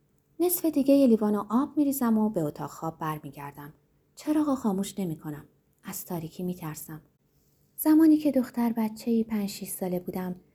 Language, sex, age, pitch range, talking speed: Persian, female, 30-49, 160-260 Hz, 135 wpm